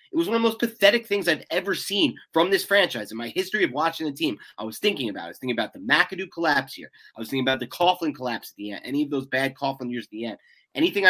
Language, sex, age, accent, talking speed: English, male, 30-49, American, 290 wpm